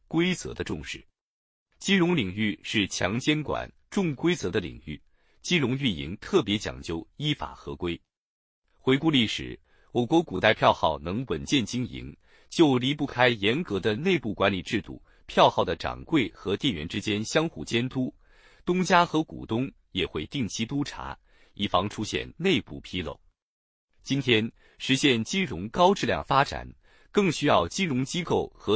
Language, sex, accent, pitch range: Chinese, male, native, 105-170 Hz